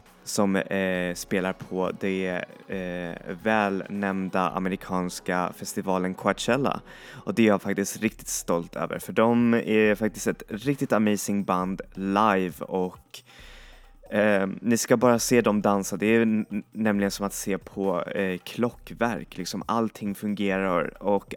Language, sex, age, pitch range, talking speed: Swedish, male, 20-39, 95-110 Hz, 135 wpm